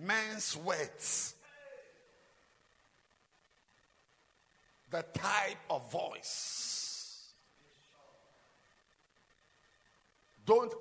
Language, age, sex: English, 50-69, male